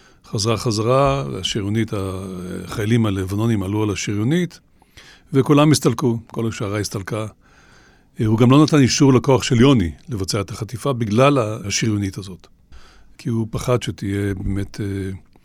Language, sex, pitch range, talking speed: Hebrew, male, 100-130 Hz, 125 wpm